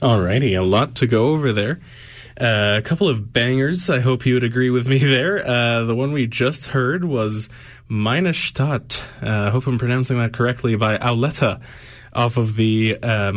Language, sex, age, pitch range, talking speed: English, male, 20-39, 110-130 Hz, 180 wpm